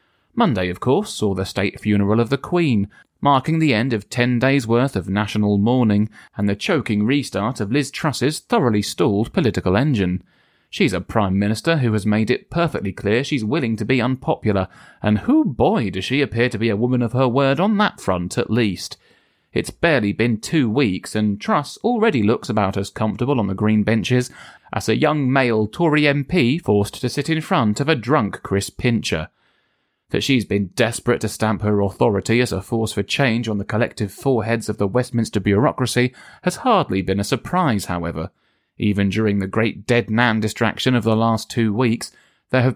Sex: male